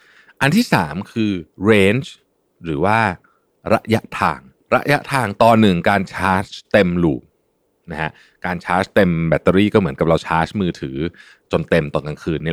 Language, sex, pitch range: Thai, male, 85-115 Hz